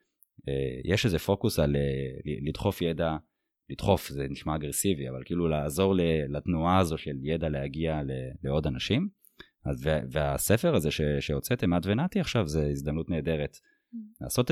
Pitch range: 75-90 Hz